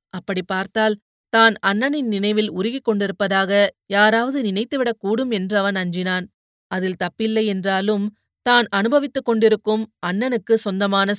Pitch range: 190-225 Hz